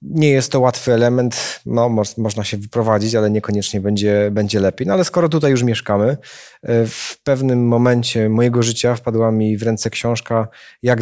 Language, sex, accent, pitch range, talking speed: Polish, male, native, 105-130 Hz, 175 wpm